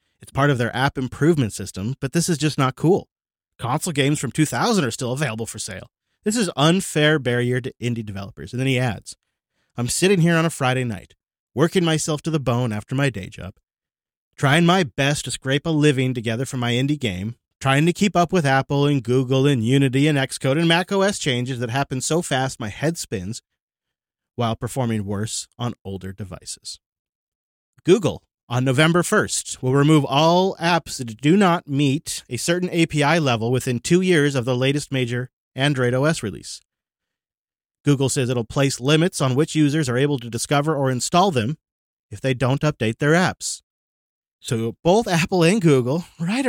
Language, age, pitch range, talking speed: English, 30-49, 120-160 Hz, 185 wpm